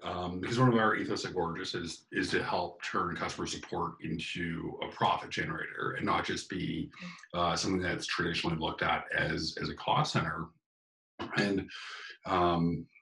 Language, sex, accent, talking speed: English, male, American, 165 wpm